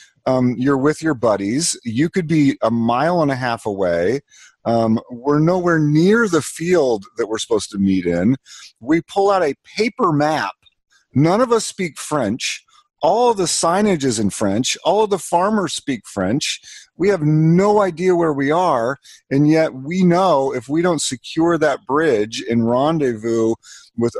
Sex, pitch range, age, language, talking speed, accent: male, 120-160 Hz, 40-59, English, 175 wpm, American